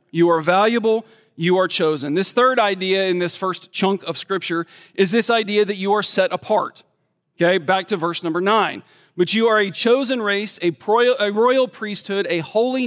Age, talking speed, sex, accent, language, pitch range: 40-59, 190 wpm, male, American, English, 180-240 Hz